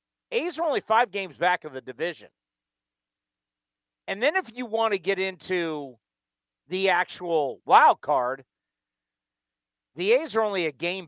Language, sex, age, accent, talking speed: English, male, 50-69, American, 145 wpm